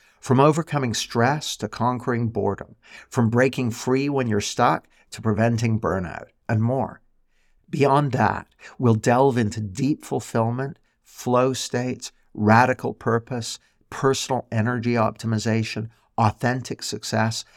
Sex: male